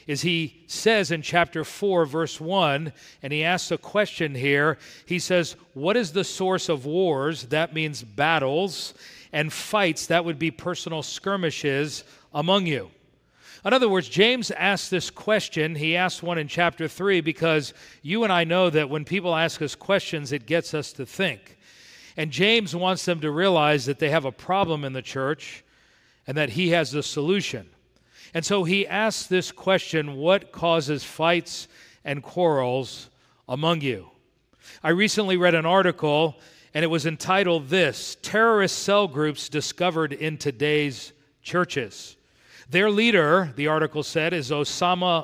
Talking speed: 160 wpm